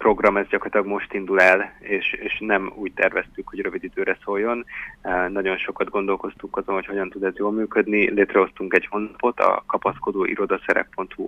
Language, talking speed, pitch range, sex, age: Hungarian, 165 wpm, 95-110 Hz, male, 30-49